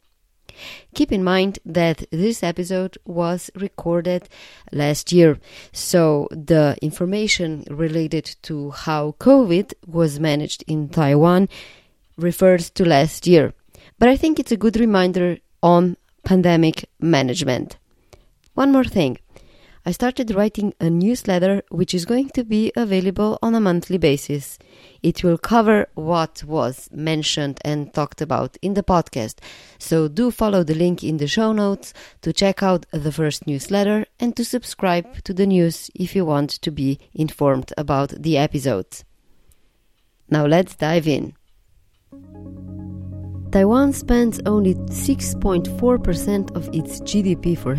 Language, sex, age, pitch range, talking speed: English, female, 20-39, 150-195 Hz, 135 wpm